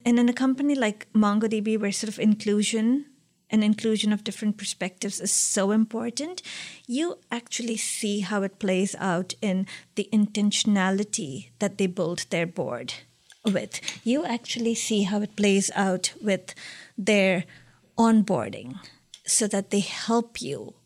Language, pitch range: English, 195-225 Hz